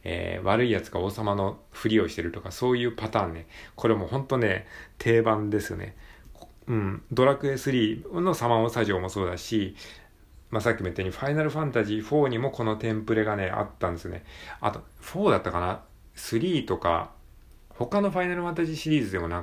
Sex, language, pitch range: male, Japanese, 90-120 Hz